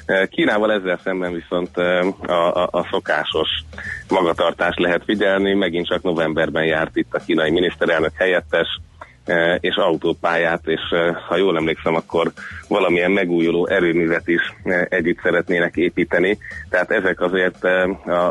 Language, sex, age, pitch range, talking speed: Hungarian, male, 30-49, 85-95 Hz, 125 wpm